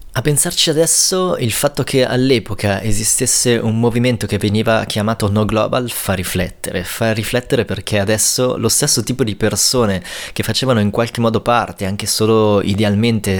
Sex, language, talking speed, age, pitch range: male, Italian, 155 wpm, 20-39, 100-120 Hz